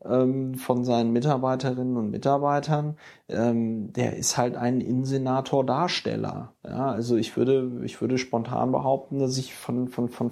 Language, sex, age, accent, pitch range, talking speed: German, male, 30-49, German, 125-140 Hz, 135 wpm